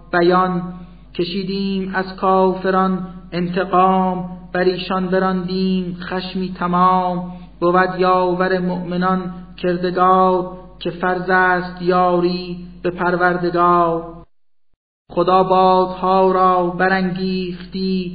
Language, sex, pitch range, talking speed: Persian, male, 180-185 Hz, 75 wpm